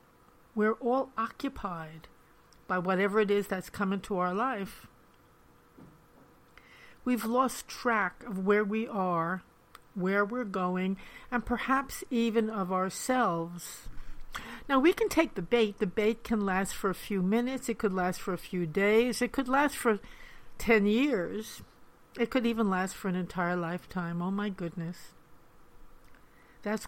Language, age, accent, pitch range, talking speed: English, 50-69, American, 185-235 Hz, 145 wpm